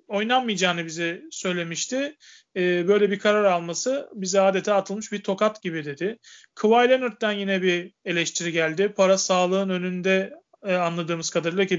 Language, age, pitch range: Turkish, 40-59, 180-220 Hz